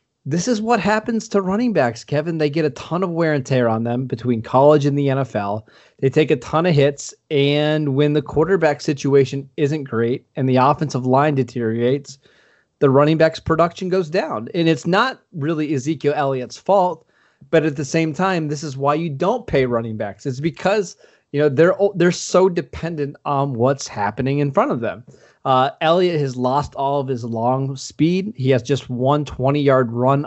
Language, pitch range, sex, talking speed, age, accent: English, 130-160 Hz, male, 190 wpm, 30-49, American